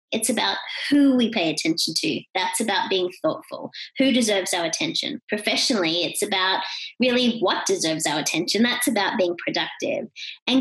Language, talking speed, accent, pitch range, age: English, 160 wpm, Australian, 200-270 Hz, 30-49